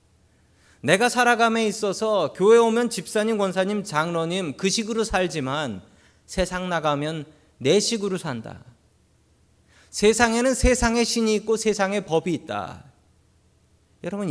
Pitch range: 115-190 Hz